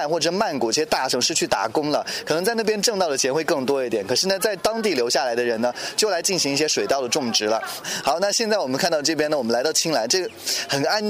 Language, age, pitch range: Chinese, 20-39, 130-180 Hz